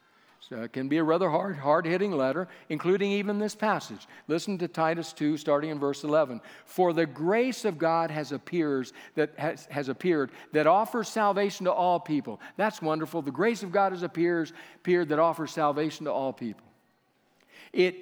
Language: English